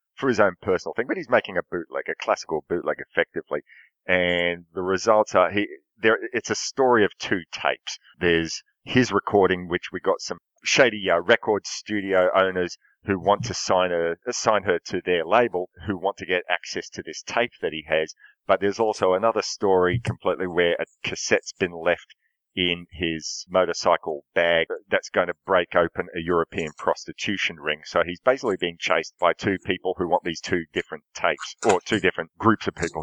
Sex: male